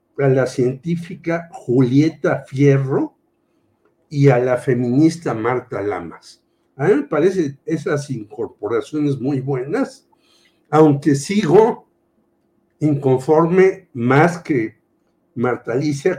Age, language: 60-79, Spanish